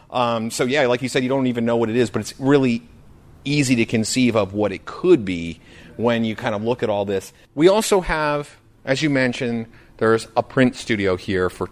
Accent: American